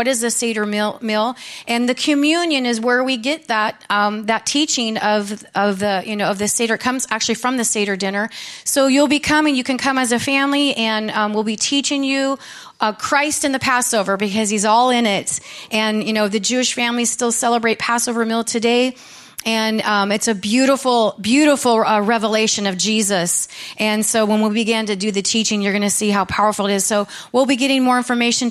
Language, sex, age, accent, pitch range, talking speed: English, female, 30-49, American, 220-270 Hz, 215 wpm